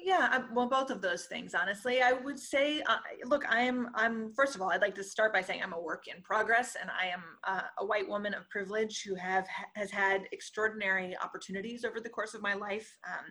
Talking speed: 220 wpm